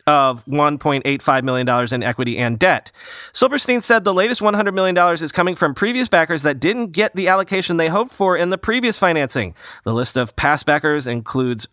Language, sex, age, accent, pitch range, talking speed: English, male, 40-59, American, 145-195 Hz, 185 wpm